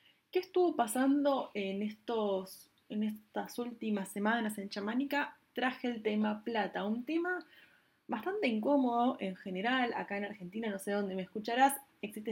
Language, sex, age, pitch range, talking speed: Spanish, female, 20-39, 205-265 Hz, 140 wpm